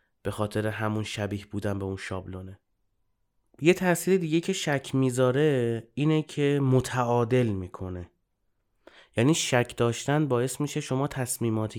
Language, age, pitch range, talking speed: Persian, 30-49, 110-145 Hz, 125 wpm